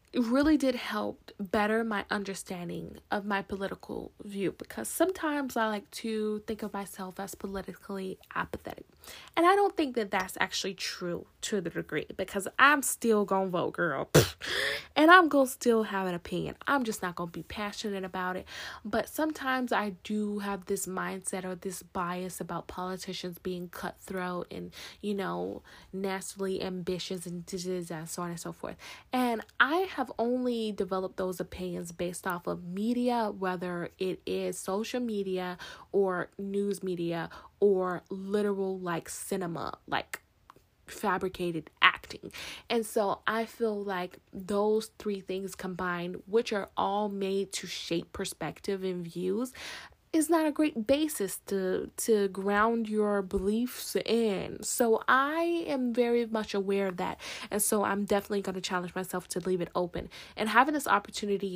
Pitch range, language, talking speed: 185-220 Hz, English, 155 wpm